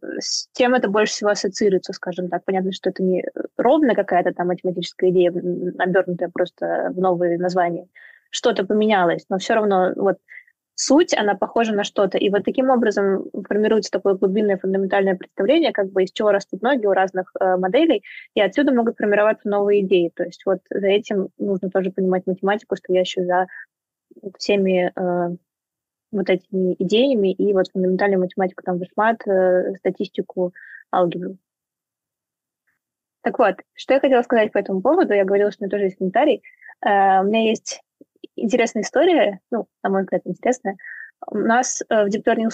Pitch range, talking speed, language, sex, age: 185-225 Hz, 165 wpm, Russian, female, 20-39